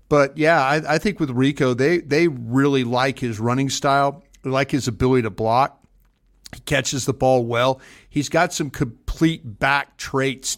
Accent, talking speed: American, 175 wpm